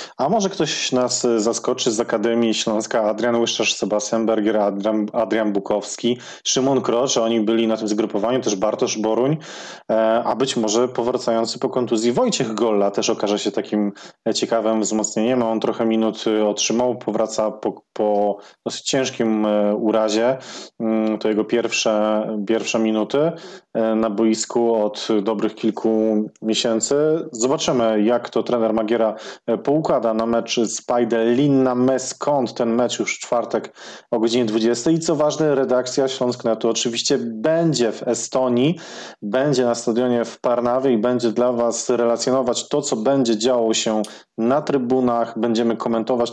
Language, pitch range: Polish, 110-125 Hz